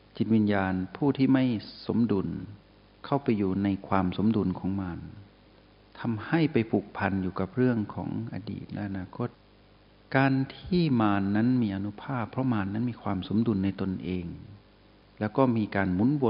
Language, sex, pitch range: Thai, male, 95-115 Hz